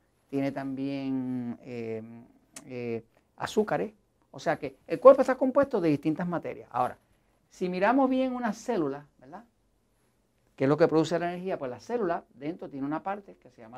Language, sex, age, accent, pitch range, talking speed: Spanish, male, 50-69, American, 135-200 Hz, 170 wpm